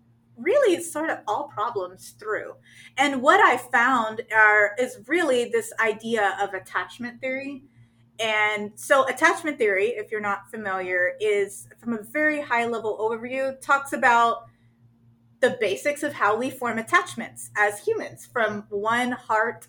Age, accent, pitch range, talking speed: 30-49, American, 195-280 Hz, 145 wpm